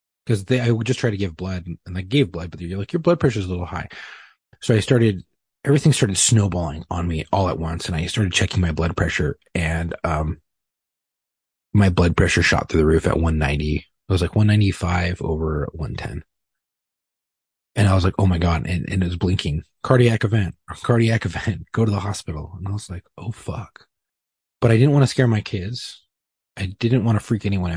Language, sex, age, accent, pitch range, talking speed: English, male, 30-49, American, 85-110 Hz, 225 wpm